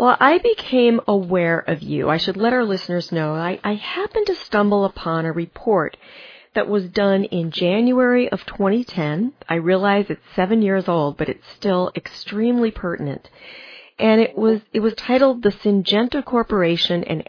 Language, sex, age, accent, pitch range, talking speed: English, female, 40-59, American, 165-215 Hz, 165 wpm